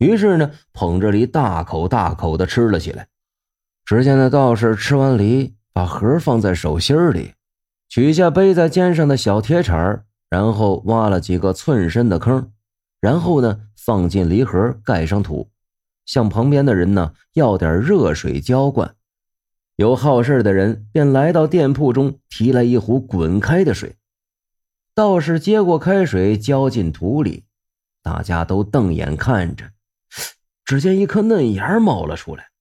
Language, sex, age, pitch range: Chinese, male, 30-49, 95-140 Hz